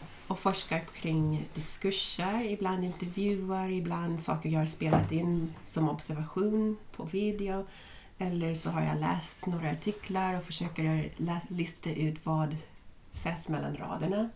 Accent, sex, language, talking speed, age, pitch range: native, female, Swedish, 130 wpm, 30-49, 155-190 Hz